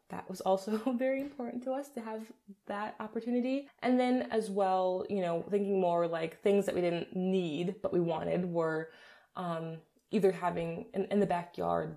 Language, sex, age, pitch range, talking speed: English, female, 20-39, 170-205 Hz, 180 wpm